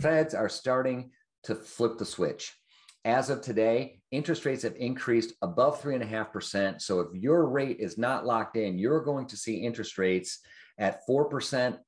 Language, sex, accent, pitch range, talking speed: English, male, American, 100-130 Hz, 185 wpm